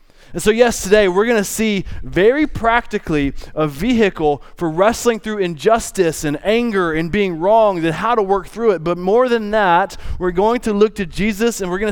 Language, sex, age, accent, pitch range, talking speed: English, male, 20-39, American, 165-225 Hz, 200 wpm